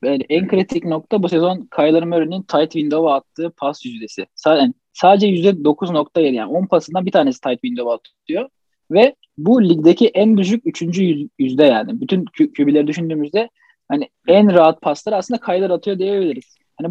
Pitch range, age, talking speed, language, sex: 150-195 Hz, 20-39, 165 wpm, Turkish, male